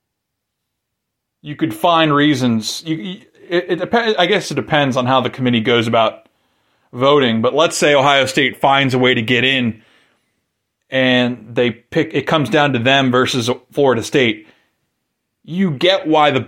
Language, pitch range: English, 125-160 Hz